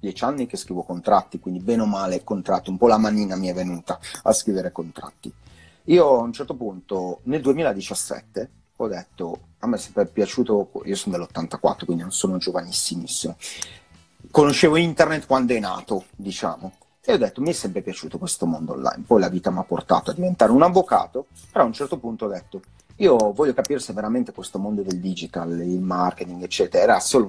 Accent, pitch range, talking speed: native, 95-130 Hz, 195 wpm